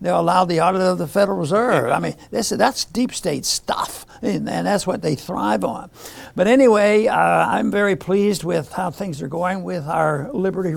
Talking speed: 190 wpm